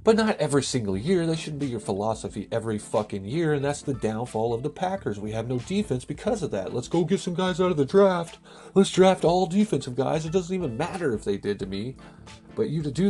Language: English